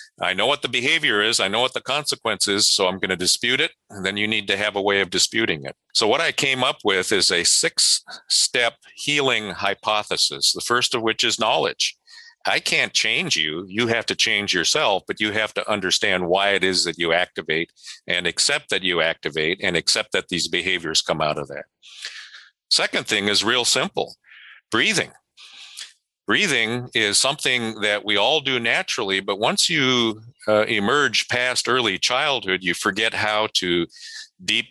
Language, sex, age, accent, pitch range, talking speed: English, male, 50-69, American, 95-120 Hz, 185 wpm